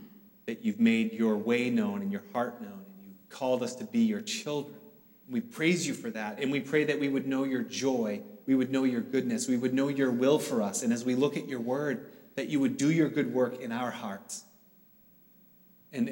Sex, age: male, 30-49